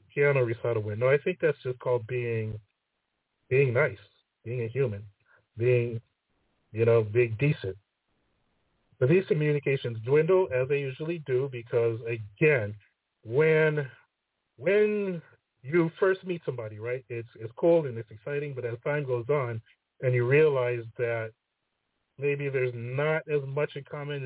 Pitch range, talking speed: 115-140 Hz, 140 wpm